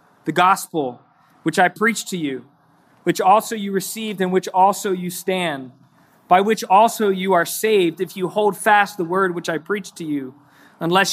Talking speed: 185 wpm